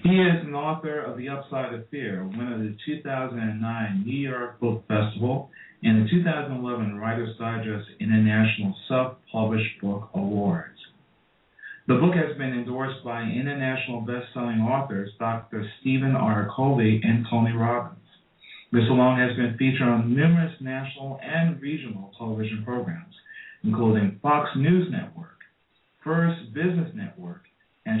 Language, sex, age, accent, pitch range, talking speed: English, male, 40-59, American, 110-150 Hz, 135 wpm